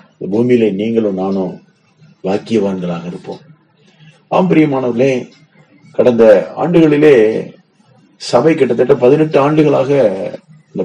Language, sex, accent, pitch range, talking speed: Tamil, male, native, 125-185 Hz, 70 wpm